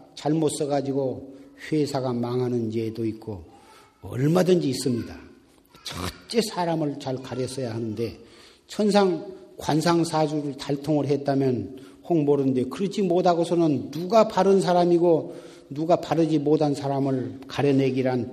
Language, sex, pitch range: Korean, male, 125-180 Hz